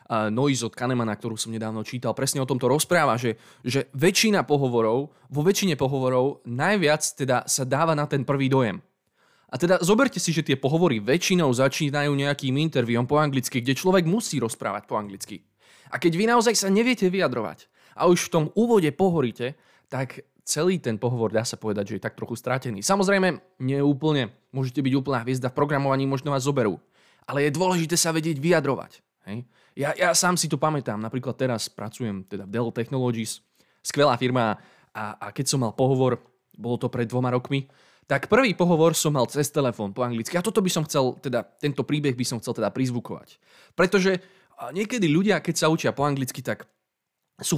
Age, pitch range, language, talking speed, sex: 20-39, 125-160 Hz, Slovak, 185 wpm, male